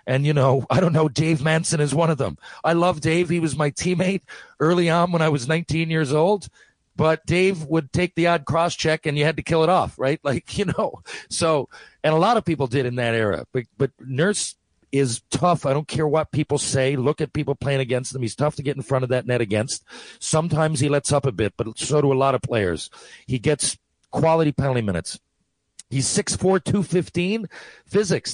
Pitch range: 130-160 Hz